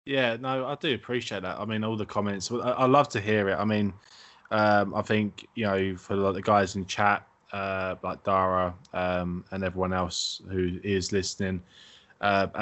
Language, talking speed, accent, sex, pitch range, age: English, 190 wpm, British, male, 95-115 Hz, 20-39